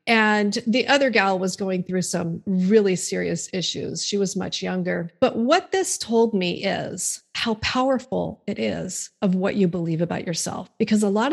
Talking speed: 180 wpm